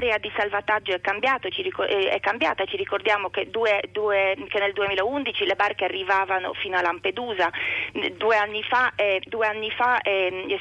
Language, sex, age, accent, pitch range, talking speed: Italian, female, 30-49, native, 190-240 Hz, 140 wpm